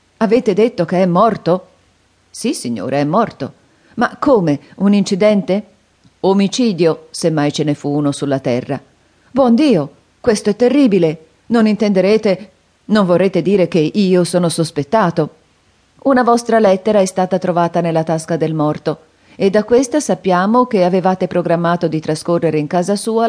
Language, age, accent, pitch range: Italian, 40-59, native, 150-210 Hz